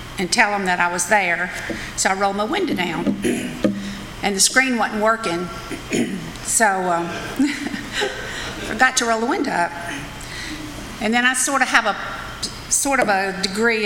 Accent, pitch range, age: American, 185-240 Hz, 50-69